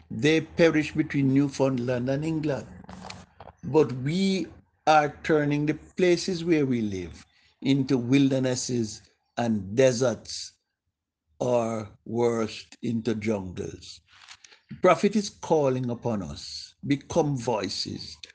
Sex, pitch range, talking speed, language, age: male, 110-145 Hz, 100 wpm, English, 60-79